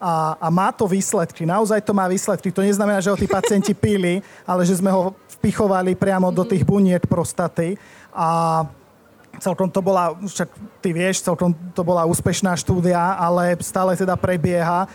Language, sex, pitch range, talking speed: Slovak, male, 175-195 Hz, 170 wpm